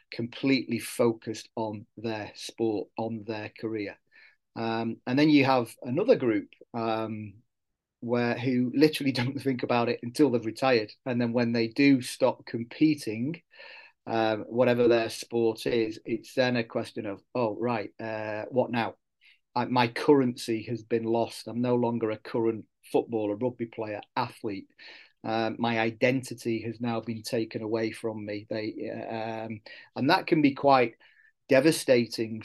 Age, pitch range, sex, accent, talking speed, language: 40-59, 110-125 Hz, male, British, 150 wpm, English